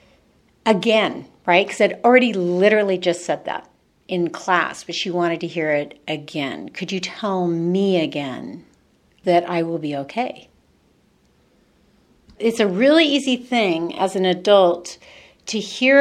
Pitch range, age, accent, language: 175-210 Hz, 60-79, American, English